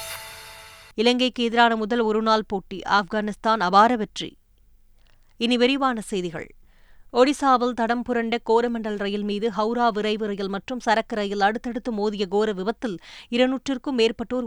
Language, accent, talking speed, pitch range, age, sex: Tamil, native, 115 wpm, 200-235 Hz, 20-39, female